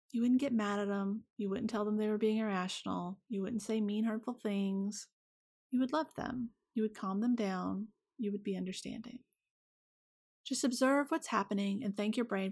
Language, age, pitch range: English, 30-49, 205-255 Hz